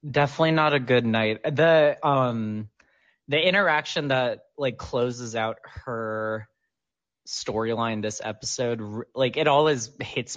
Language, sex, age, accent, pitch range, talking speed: English, male, 20-39, American, 110-135 Hz, 120 wpm